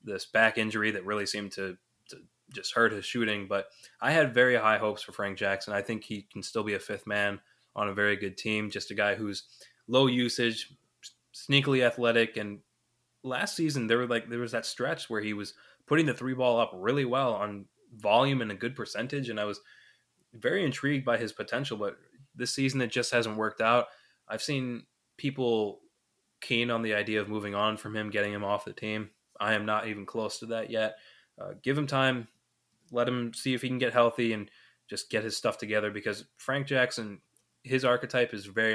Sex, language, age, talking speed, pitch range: male, English, 20-39, 210 wpm, 105-120 Hz